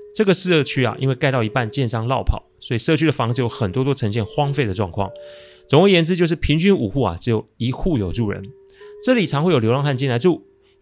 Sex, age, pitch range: male, 30-49, 105-150 Hz